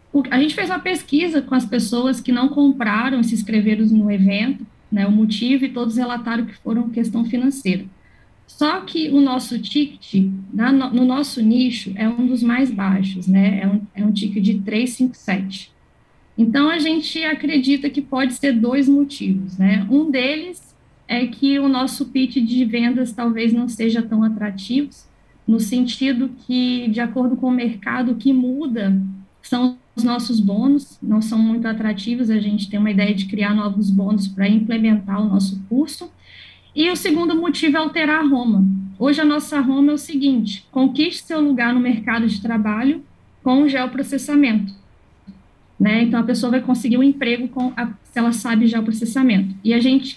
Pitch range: 215-270 Hz